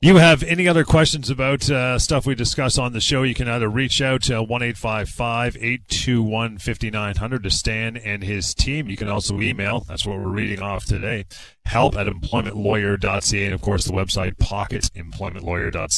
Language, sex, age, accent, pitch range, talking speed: English, male, 40-59, American, 100-130 Hz, 175 wpm